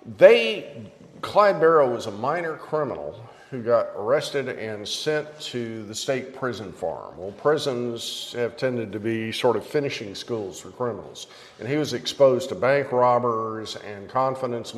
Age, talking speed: 50-69, 155 wpm